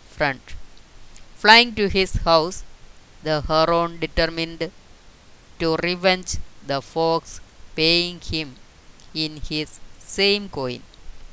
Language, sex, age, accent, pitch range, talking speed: Malayalam, female, 20-39, native, 150-190 Hz, 95 wpm